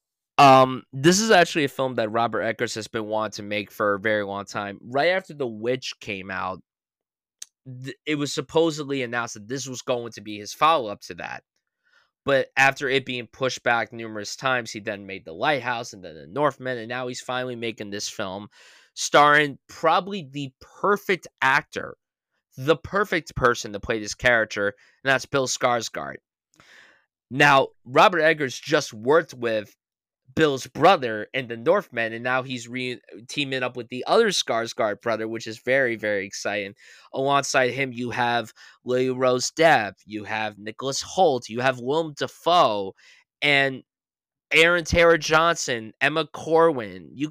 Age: 20-39